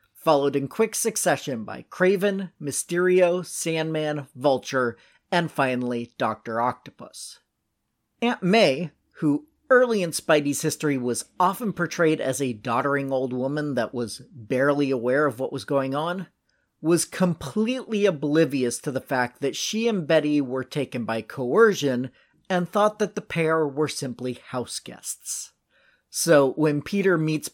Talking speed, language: 135 wpm, English